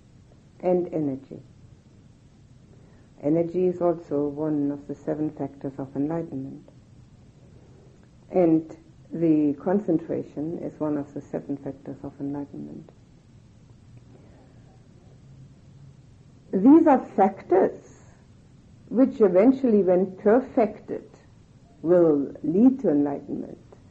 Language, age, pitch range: English, 60-79, 140-200 Hz